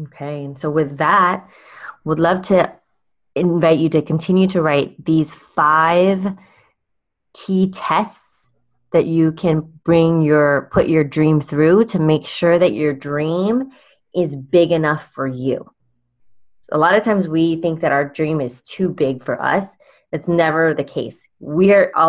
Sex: female